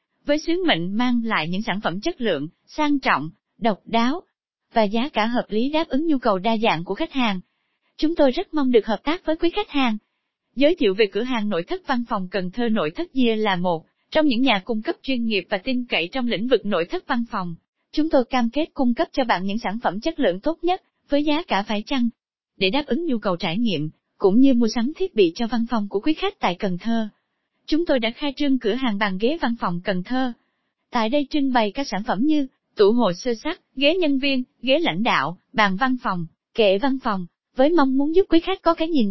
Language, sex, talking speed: Vietnamese, female, 245 wpm